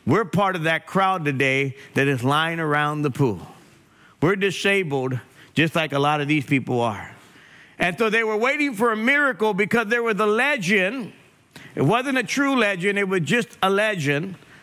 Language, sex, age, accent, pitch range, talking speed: English, male, 50-69, American, 180-230 Hz, 185 wpm